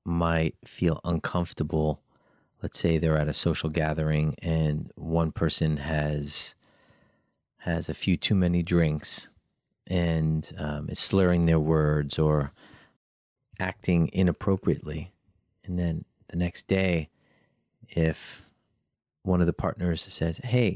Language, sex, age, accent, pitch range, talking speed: English, male, 40-59, American, 80-95 Hz, 120 wpm